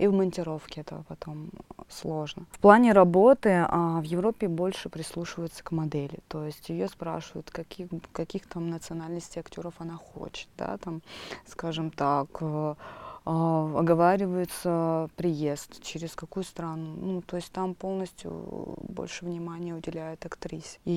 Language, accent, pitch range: Russian, native, 160-190 Hz